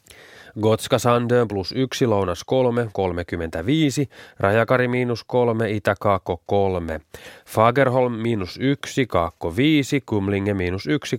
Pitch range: 95-130 Hz